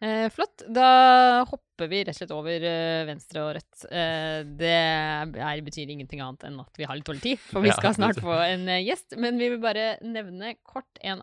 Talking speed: 190 wpm